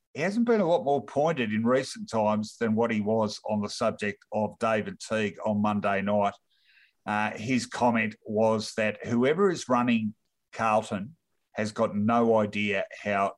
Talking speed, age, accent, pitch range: 165 wpm, 50-69, Australian, 105-125 Hz